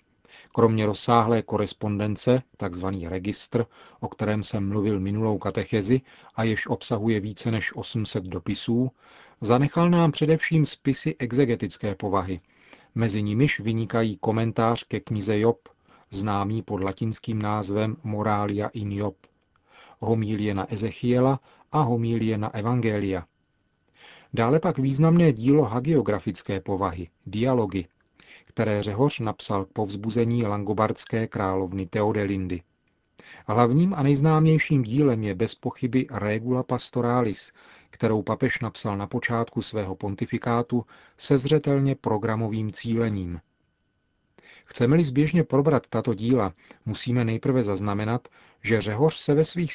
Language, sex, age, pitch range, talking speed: Czech, male, 40-59, 105-130 Hz, 110 wpm